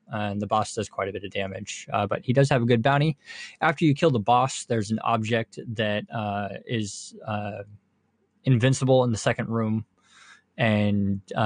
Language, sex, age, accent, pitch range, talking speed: English, male, 20-39, American, 100-120 Hz, 185 wpm